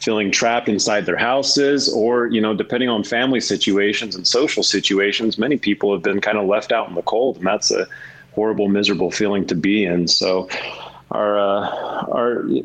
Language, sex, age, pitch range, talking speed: English, male, 30-49, 95-110 Hz, 185 wpm